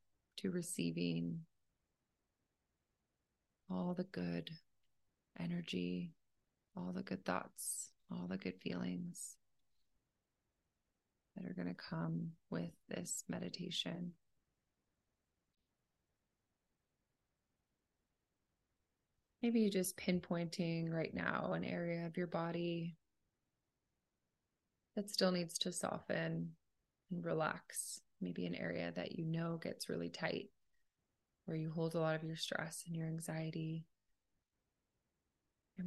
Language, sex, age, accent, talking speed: English, female, 30-49, American, 100 wpm